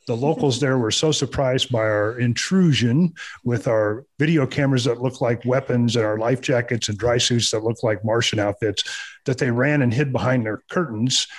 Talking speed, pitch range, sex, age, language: 195 wpm, 110-135 Hz, male, 40-59, English